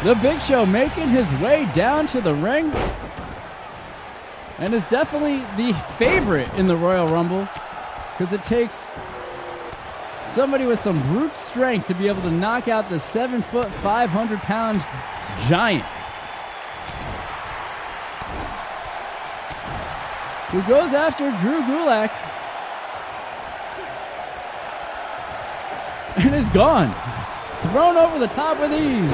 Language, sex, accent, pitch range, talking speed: English, male, American, 185-290 Hz, 110 wpm